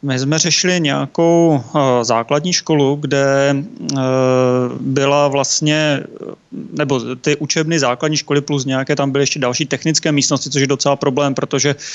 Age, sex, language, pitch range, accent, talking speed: 30-49, male, Czech, 140-155 Hz, native, 135 wpm